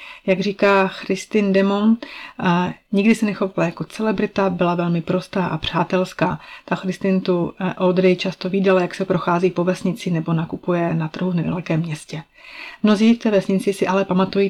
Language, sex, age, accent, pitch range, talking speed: Czech, female, 30-49, native, 175-195 Hz, 160 wpm